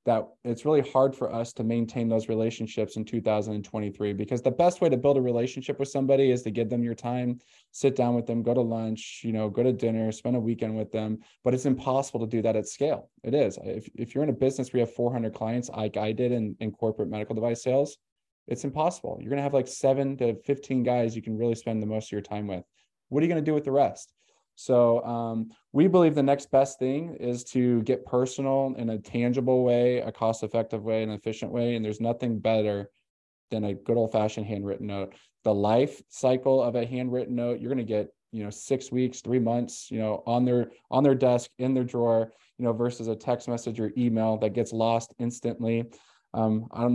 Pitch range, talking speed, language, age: 110-125 Hz, 225 wpm, English, 20-39